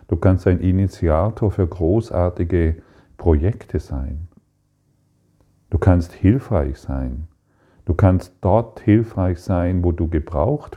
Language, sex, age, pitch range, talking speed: German, male, 40-59, 80-100 Hz, 110 wpm